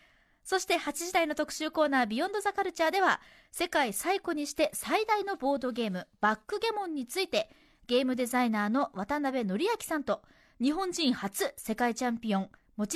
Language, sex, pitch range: Japanese, female, 215-335 Hz